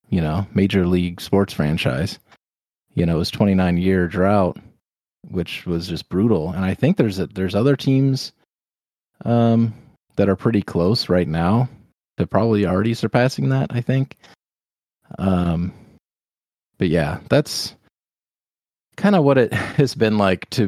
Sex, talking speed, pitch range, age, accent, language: male, 150 wpm, 90-110 Hz, 30-49, American, English